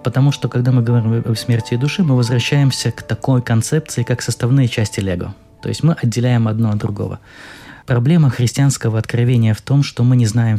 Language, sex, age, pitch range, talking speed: Russian, male, 20-39, 110-130 Hz, 195 wpm